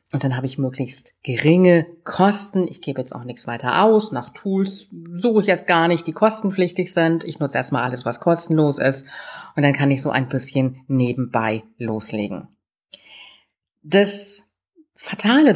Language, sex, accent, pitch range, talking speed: German, female, German, 130-180 Hz, 160 wpm